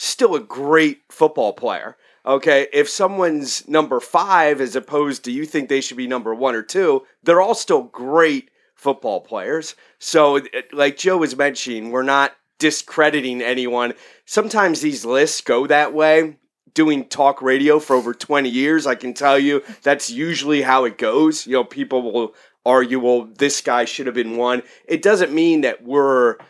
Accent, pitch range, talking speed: American, 130-165 Hz, 170 wpm